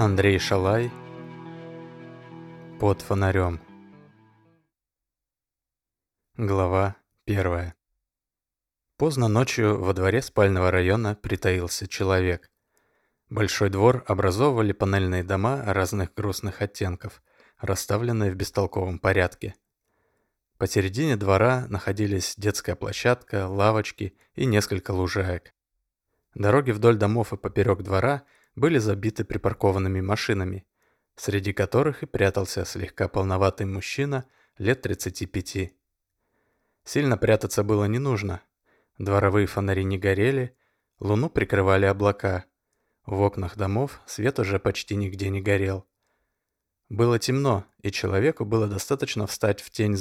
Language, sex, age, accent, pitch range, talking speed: Russian, male, 20-39, native, 95-115 Hz, 100 wpm